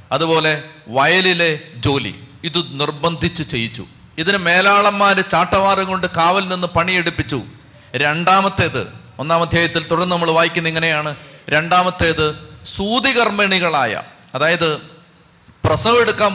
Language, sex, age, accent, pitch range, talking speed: Malayalam, male, 40-59, native, 150-190 Hz, 85 wpm